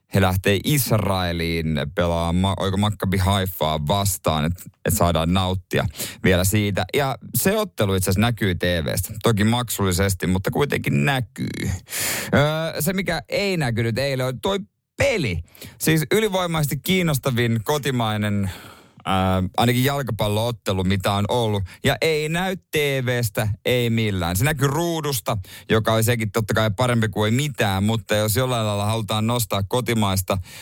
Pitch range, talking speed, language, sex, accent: 100-130 Hz, 135 wpm, Finnish, male, native